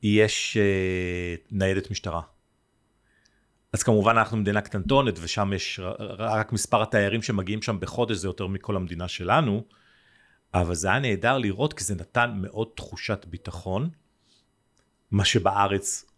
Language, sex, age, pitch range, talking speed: Hebrew, male, 40-59, 90-115 Hz, 130 wpm